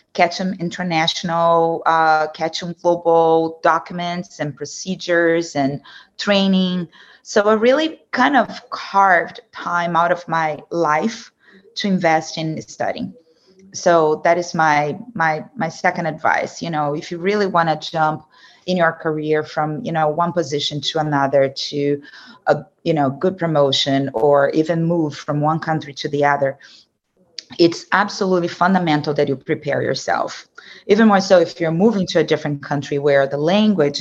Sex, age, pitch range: female, 30-49, 145-180 Hz